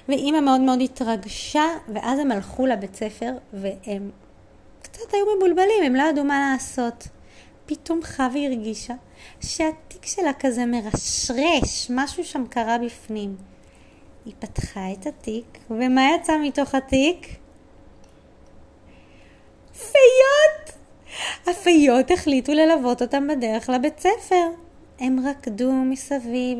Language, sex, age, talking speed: Hebrew, female, 20-39, 110 wpm